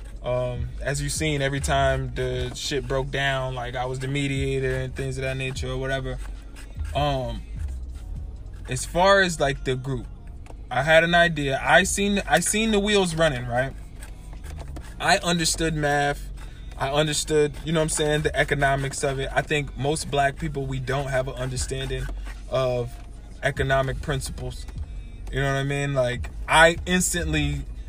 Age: 20-39